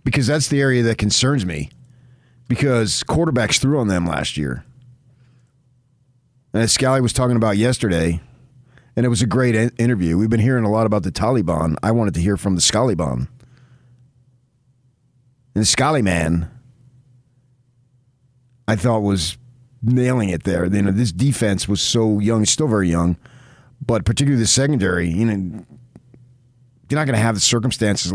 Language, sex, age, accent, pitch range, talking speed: English, male, 40-59, American, 105-130 Hz, 150 wpm